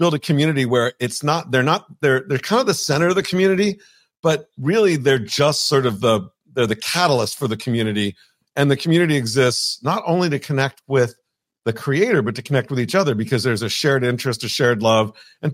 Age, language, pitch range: 50-69, English, 120-175 Hz